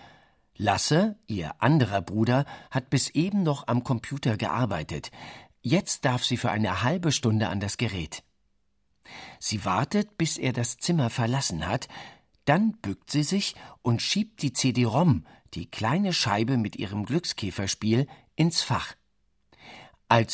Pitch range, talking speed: 110-155 Hz, 135 wpm